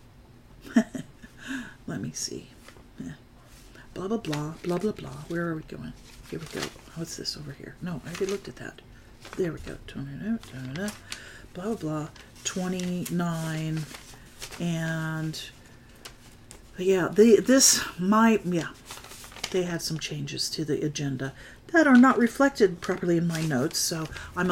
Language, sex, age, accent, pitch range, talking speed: English, female, 50-69, American, 160-225 Hz, 140 wpm